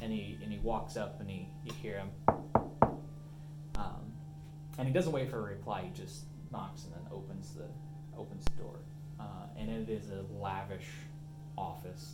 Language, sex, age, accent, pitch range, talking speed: English, male, 20-39, American, 130-155 Hz, 180 wpm